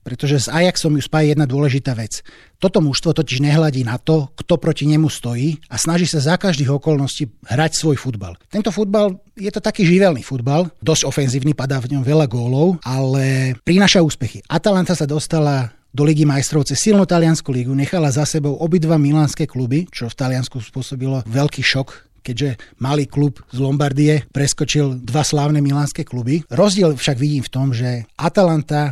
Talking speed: 170 wpm